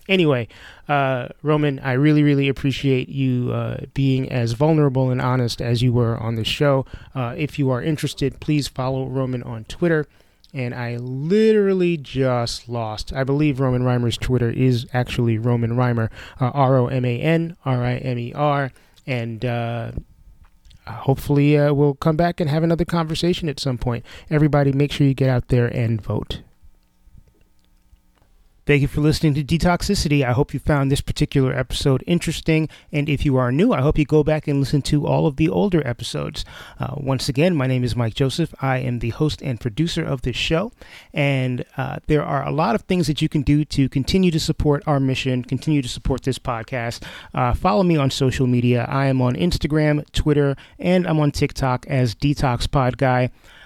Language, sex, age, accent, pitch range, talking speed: English, male, 30-49, American, 125-150 Hz, 175 wpm